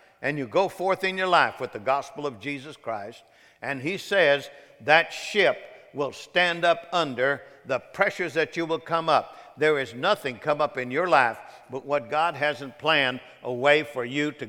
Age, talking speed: 60-79, 195 wpm